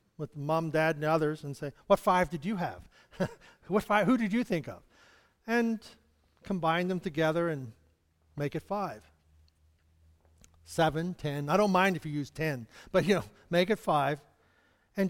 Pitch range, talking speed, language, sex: 145-205 Hz, 170 wpm, English, male